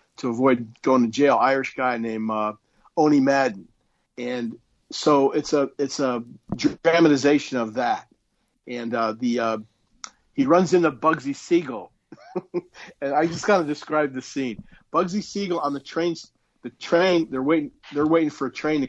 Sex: male